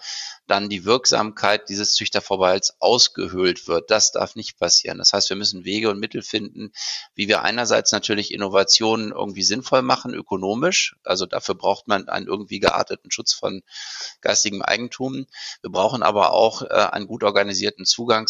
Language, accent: German, German